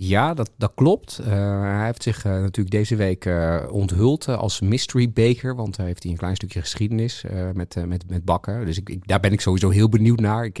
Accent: Dutch